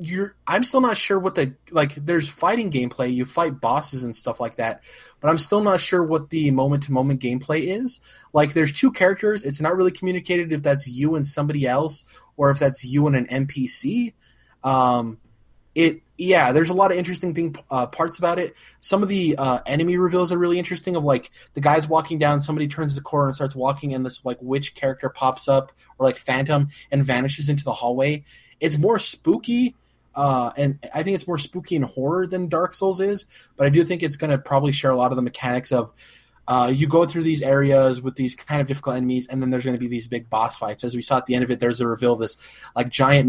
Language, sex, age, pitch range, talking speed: English, male, 20-39, 130-170 Hz, 230 wpm